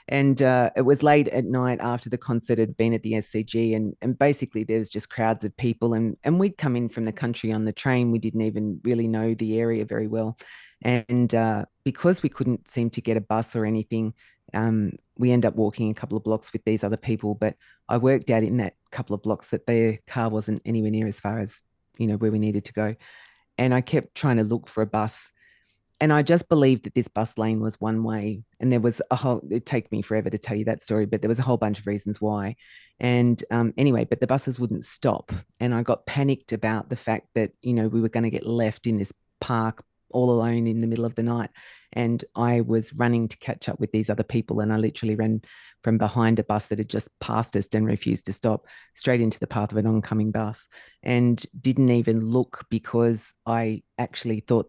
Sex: female